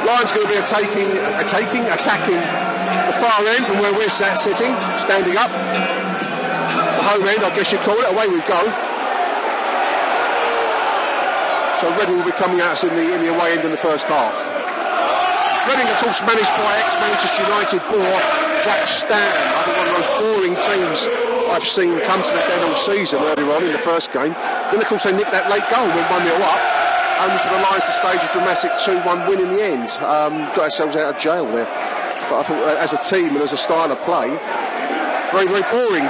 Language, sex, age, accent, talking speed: English, male, 30-49, British, 205 wpm